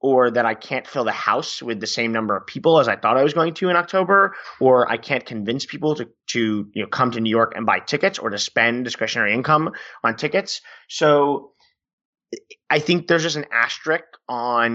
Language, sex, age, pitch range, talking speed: English, male, 30-49, 110-135 Hz, 215 wpm